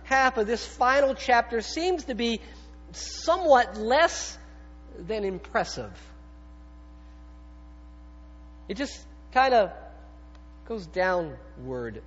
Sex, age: male, 50-69